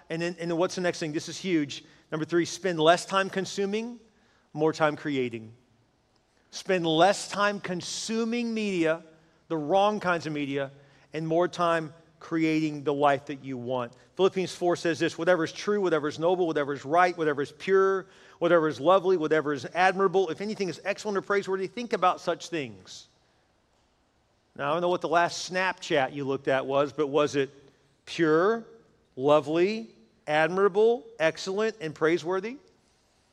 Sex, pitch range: male, 155-195 Hz